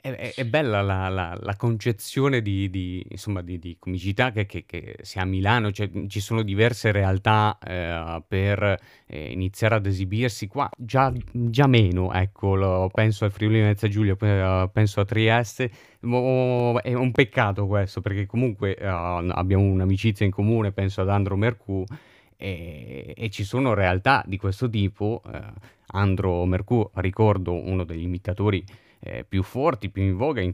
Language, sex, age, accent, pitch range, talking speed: Italian, male, 30-49, native, 95-115 Hz, 160 wpm